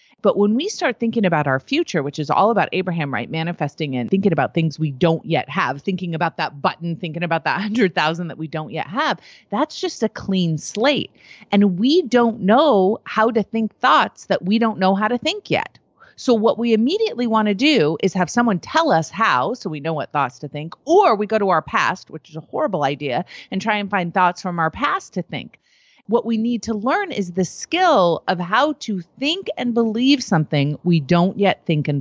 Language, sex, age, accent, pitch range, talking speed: English, female, 30-49, American, 160-230 Hz, 225 wpm